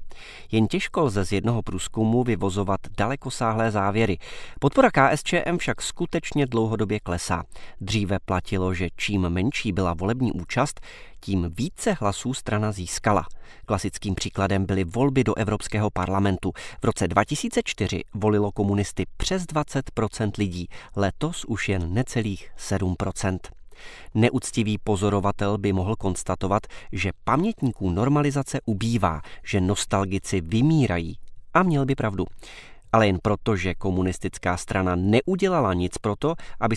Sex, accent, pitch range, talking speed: male, native, 95-125 Hz, 120 wpm